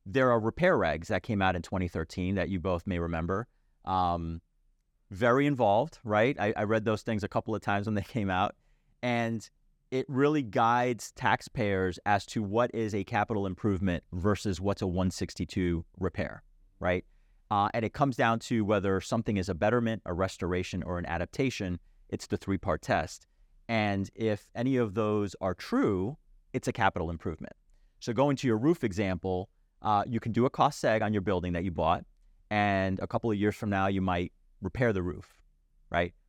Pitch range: 90-115 Hz